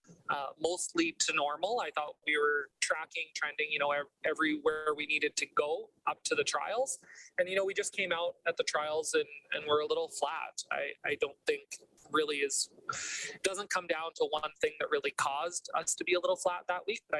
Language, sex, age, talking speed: English, male, 20-39, 215 wpm